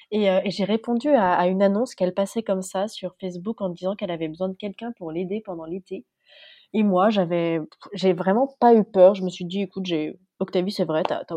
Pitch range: 170-195 Hz